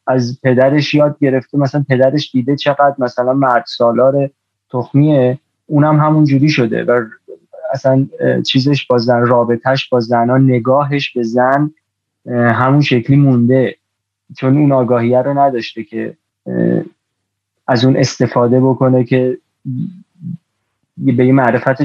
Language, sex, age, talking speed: Persian, male, 30-49, 120 wpm